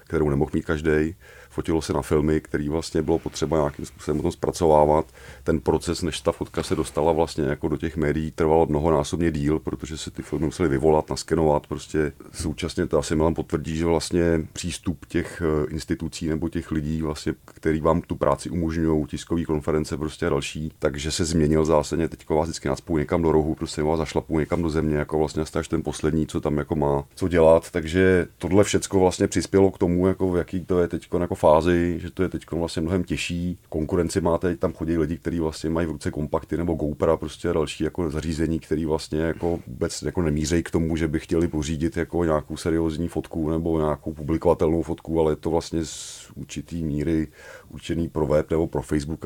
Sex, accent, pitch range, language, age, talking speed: male, native, 75-85 Hz, Czech, 40-59, 195 wpm